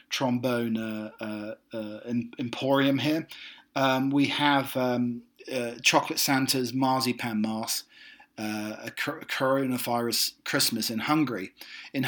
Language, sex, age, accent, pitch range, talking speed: English, male, 40-59, British, 115-140 Hz, 110 wpm